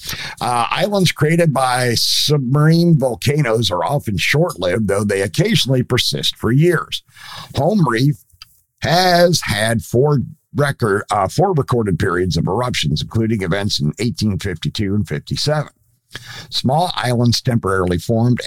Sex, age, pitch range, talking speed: male, 50-69, 95-140 Hz, 120 wpm